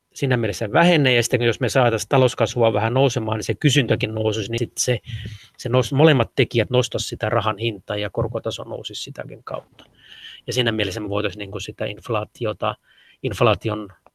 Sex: male